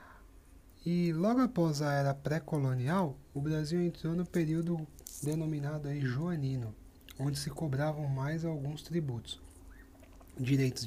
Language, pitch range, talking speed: Portuguese, 115-145 Hz, 115 wpm